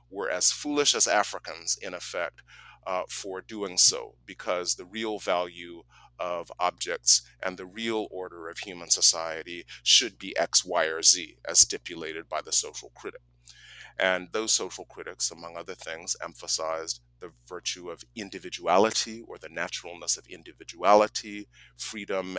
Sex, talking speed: male, 145 wpm